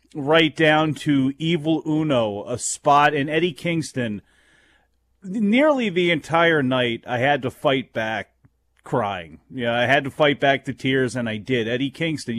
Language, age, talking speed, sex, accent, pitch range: English, 40-59, 160 wpm, male, American, 130-160 Hz